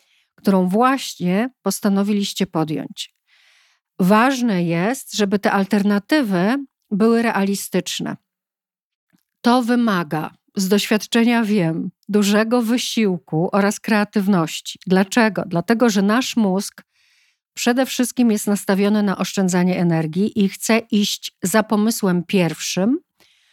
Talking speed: 95 wpm